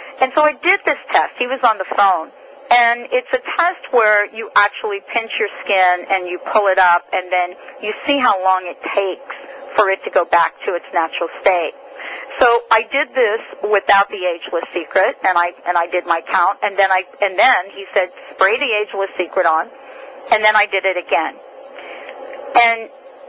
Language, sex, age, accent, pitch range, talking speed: English, female, 40-59, American, 185-275 Hz, 200 wpm